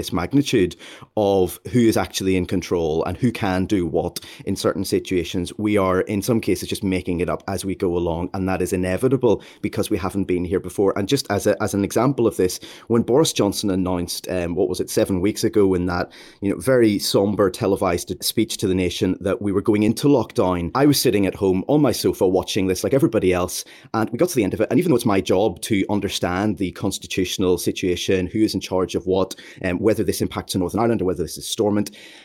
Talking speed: 235 wpm